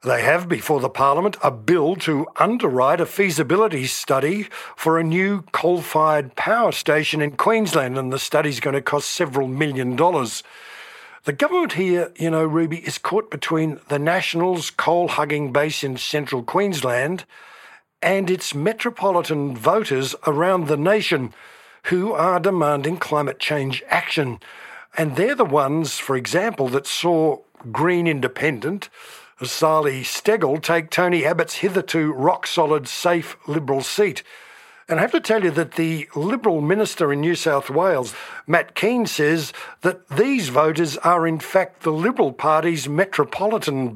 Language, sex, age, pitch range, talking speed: English, male, 50-69, 145-180 Hz, 145 wpm